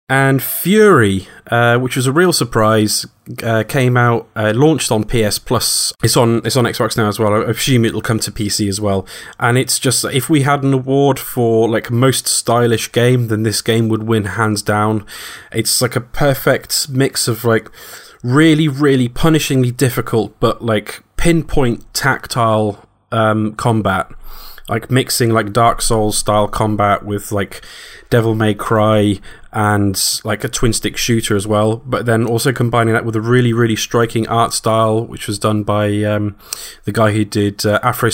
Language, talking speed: English, 175 wpm